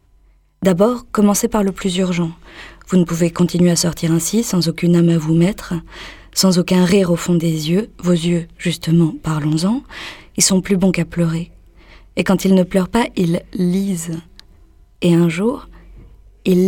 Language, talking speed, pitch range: French, 175 wpm, 165-195 Hz